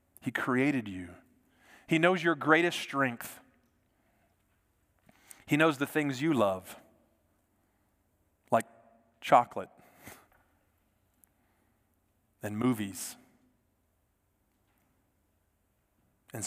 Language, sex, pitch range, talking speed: English, male, 95-130 Hz, 70 wpm